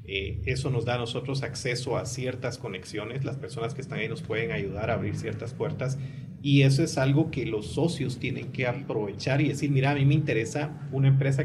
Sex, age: male, 40-59